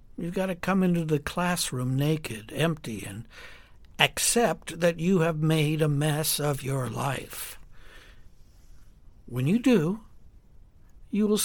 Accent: American